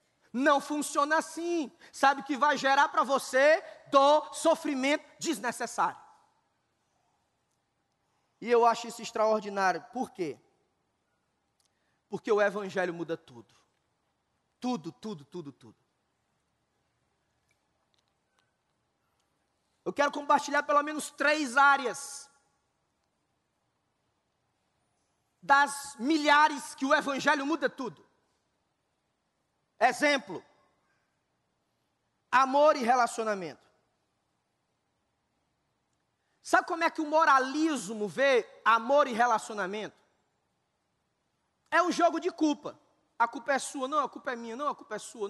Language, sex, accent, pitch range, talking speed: Portuguese, male, Brazilian, 250-315 Hz, 100 wpm